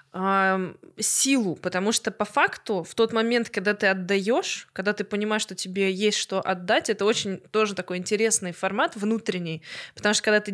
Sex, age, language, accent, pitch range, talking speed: female, 20-39, Russian, native, 200-245 Hz, 170 wpm